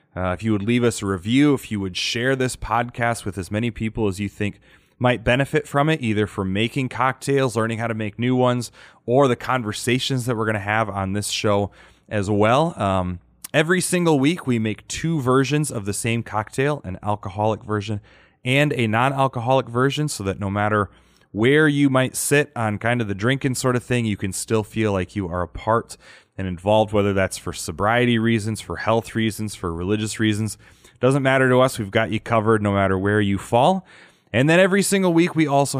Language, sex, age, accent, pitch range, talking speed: English, male, 30-49, American, 105-135 Hz, 210 wpm